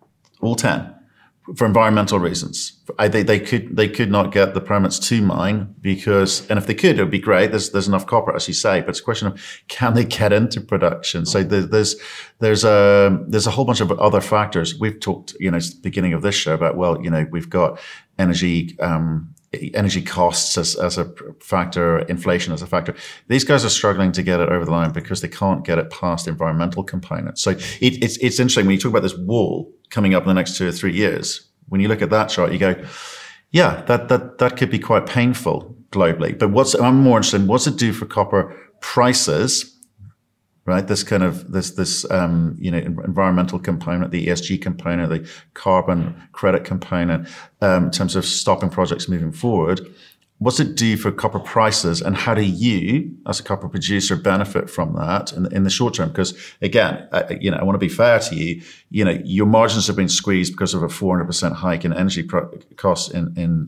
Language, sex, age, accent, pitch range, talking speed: English, male, 50-69, British, 90-110 Hz, 215 wpm